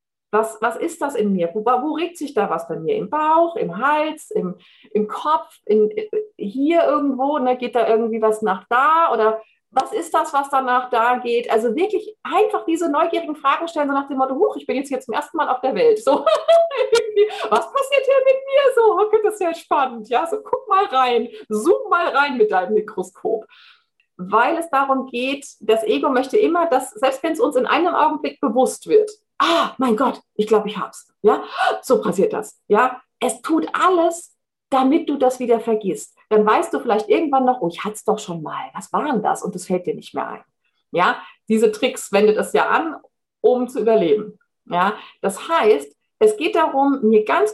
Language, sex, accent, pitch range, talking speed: German, female, German, 225-345 Hz, 205 wpm